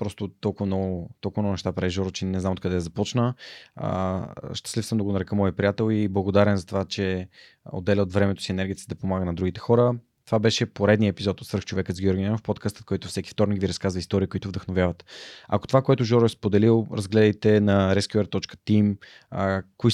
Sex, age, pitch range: male, 20-39, 95-110 Hz